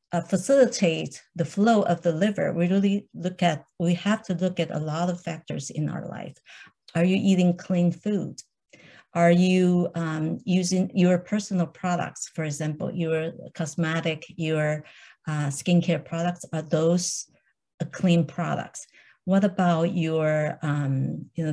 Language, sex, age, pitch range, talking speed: English, female, 50-69, 160-185 Hz, 145 wpm